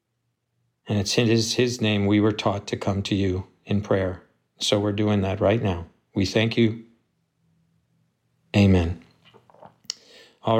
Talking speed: 145 wpm